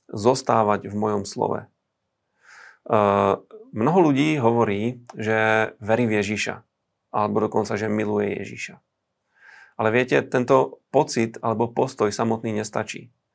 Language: Slovak